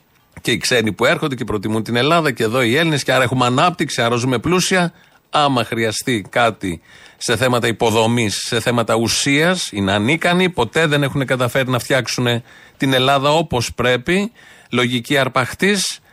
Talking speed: 160 wpm